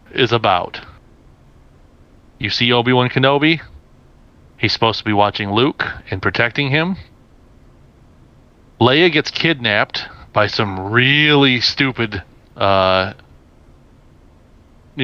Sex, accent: male, American